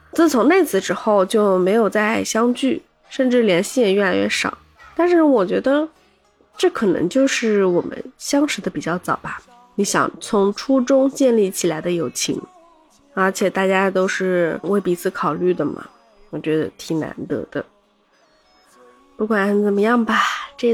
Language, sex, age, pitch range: Chinese, female, 20-39, 175-235 Hz